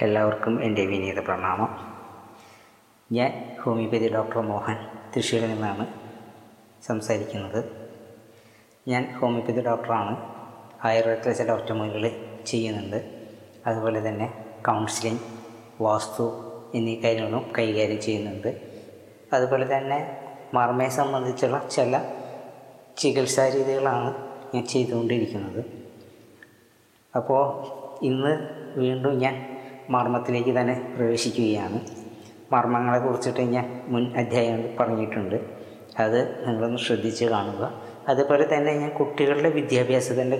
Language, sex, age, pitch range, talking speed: Malayalam, female, 20-39, 115-135 Hz, 80 wpm